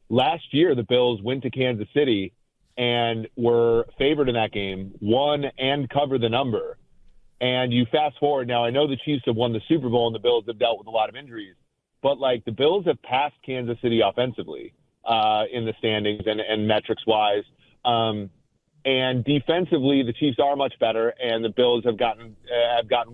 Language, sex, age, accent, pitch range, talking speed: English, male, 30-49, American, 115-140 Hz, 190 wpm